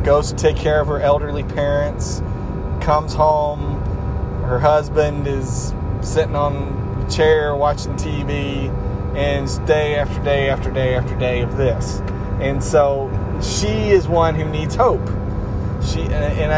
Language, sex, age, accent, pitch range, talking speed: English, male, 30-49, American, 105-145 Hz, 140 wpm